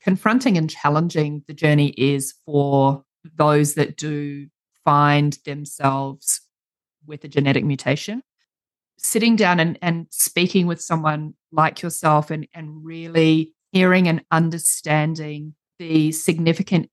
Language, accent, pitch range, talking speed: English, Australian, 150-185 Hz, 115 wpm